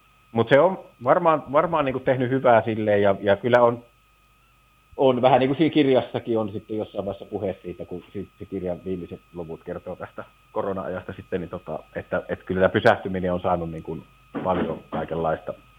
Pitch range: 95-120 Hz